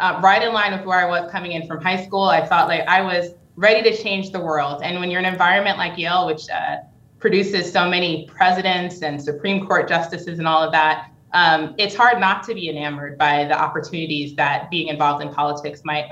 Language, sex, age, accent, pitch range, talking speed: English, female, 20-39, American, 160-195 Hz, 225 wpm